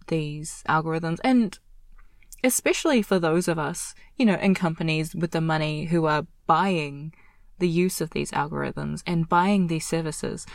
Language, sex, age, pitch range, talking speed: English, female, 20-39, 155-190 Hz, 155 wpm